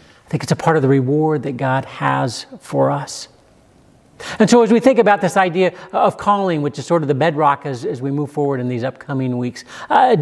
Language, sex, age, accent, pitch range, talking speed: English, male, 50-69, American, 135-170 Hz, 230 wpm